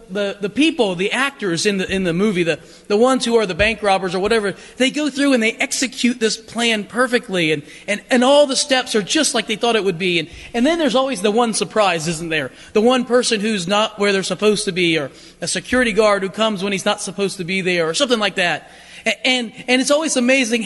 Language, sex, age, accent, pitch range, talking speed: English, male, 30-49, American, 185-250 Hz, 250 wpm